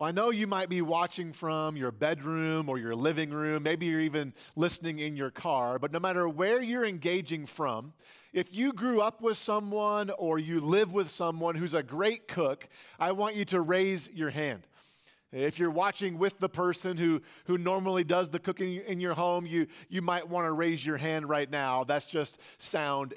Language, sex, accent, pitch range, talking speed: English, male, American, 155-185 Hz, 200 wpm